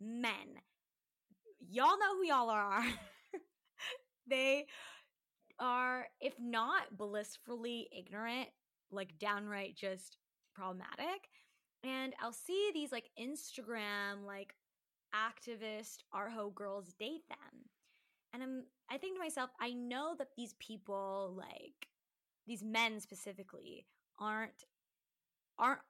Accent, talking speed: American, 105 wpm